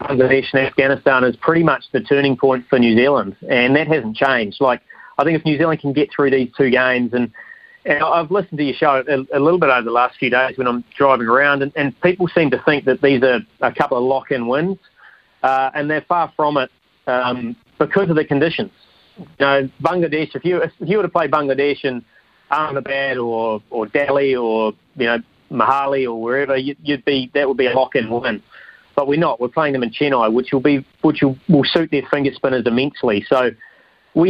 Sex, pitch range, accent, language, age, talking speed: male, 125-150 Hz, Australian, English, 30-49, 215 wpm